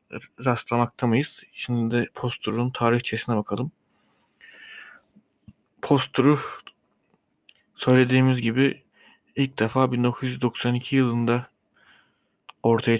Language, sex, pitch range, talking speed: Turkish, male, 115-125 Hz, 70 wpm